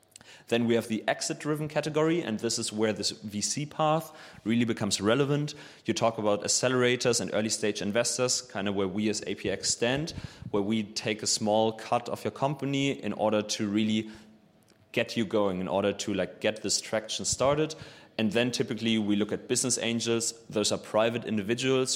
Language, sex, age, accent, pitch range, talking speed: English, male, 30-49, German, 105-125 Hz, 180 wpm